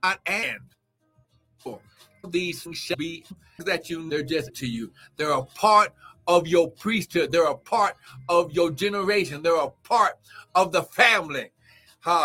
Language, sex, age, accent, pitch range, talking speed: English, male, 60-79, American, 140-190 Hz, 145 wpm